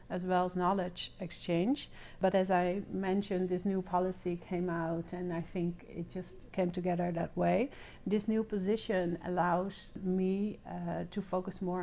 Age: 60-79